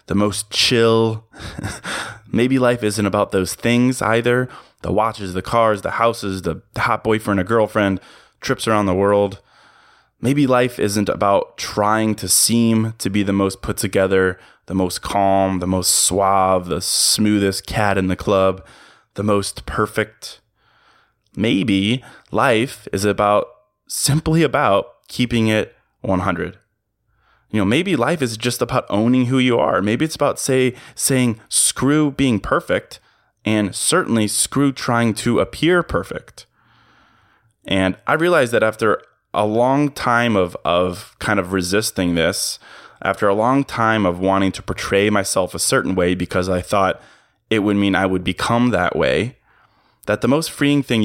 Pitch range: 95-120 Hz